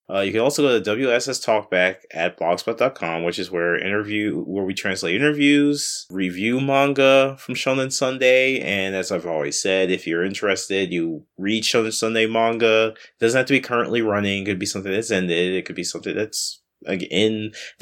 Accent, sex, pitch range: American, male, 90-130 Hz